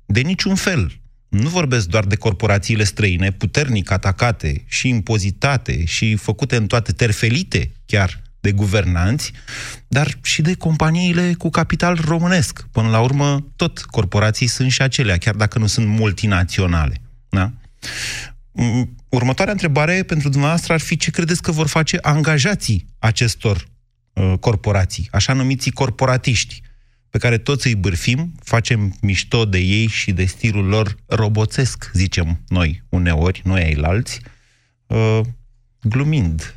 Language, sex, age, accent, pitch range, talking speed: Romanian, male, 30-49, native, 95-125 Hz, 130 wpm